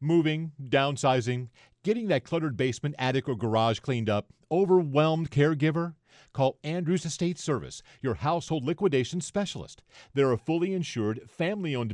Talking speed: 130 wpm